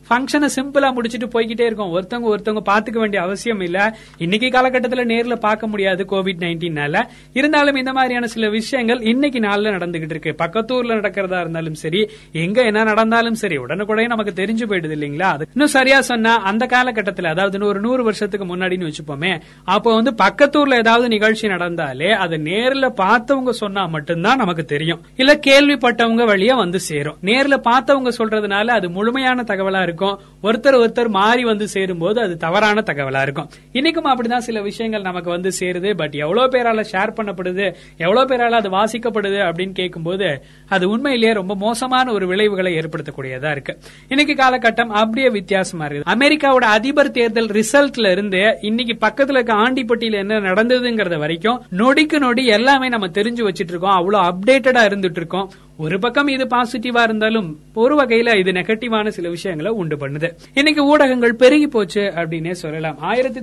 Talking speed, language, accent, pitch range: 115 wpm, Tamil, native, 185-245 Hz